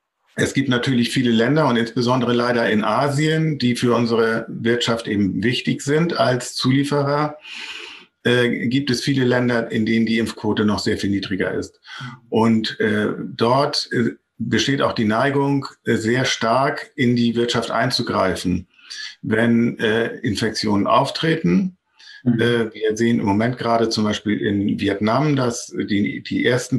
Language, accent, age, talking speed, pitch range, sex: German, German, 50-69, 145 wpm, 110-125 Hz, male